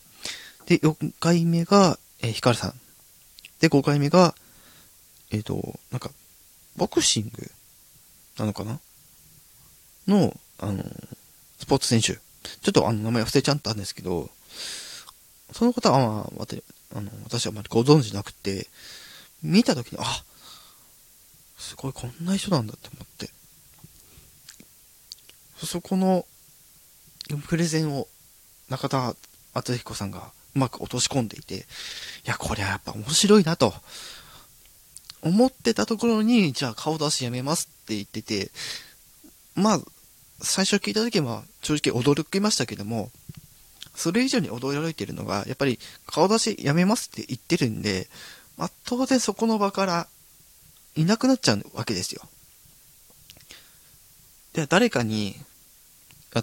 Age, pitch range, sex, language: 20-39, 115-180 Hz, male, Japanese